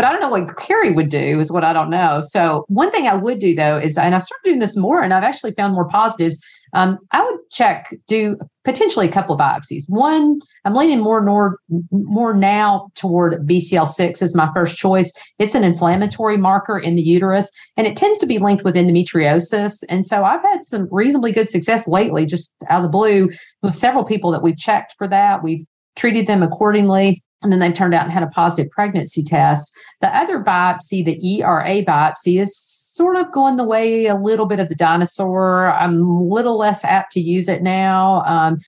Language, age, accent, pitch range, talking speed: English, 40-59, American, 170-210 Hz, 210 wpm